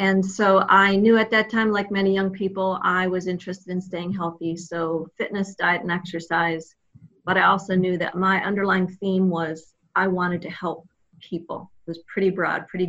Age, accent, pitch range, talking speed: 40-59, American, 175-210 Hz, 190 wpm